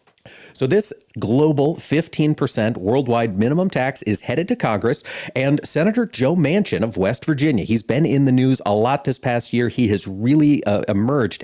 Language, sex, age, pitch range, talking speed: English, male, 40-59, 110-145 Hz, 175 wpm